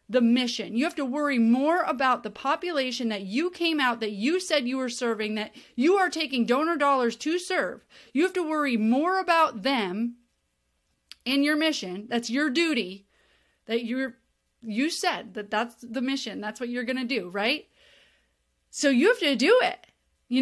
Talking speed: 185 wpm